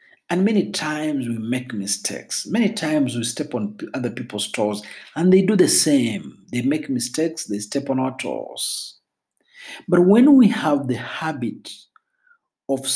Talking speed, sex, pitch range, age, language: 155 wpm, male, 120-170 Hz, 50-69, Swahili